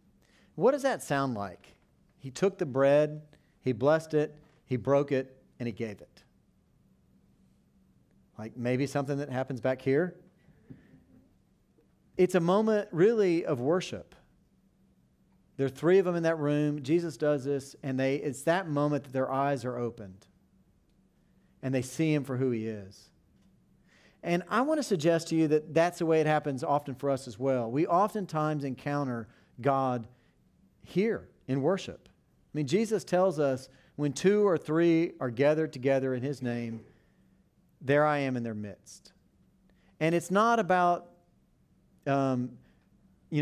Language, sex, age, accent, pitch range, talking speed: English, male, 40-59, American, 130-165 Hz, 155 wpm